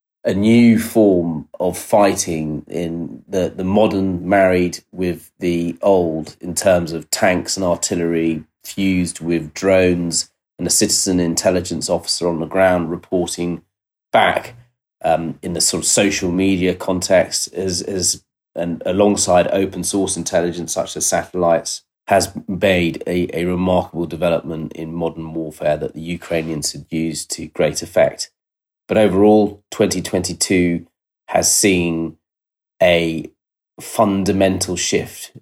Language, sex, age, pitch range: English, male, 30-49, 80-95 Hz